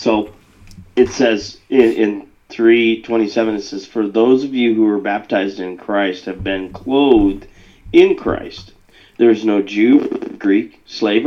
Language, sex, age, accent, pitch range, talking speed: English, male, 40-59, American, 100-130 Hz, 150 wpm